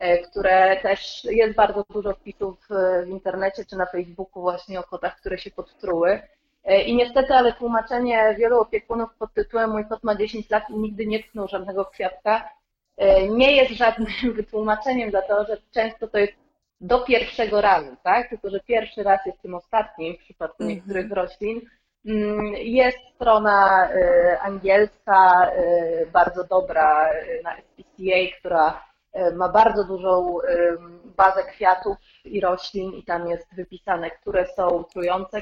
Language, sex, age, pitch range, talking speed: Polish, female, 30-49, 180-220 Hz, 140 wpm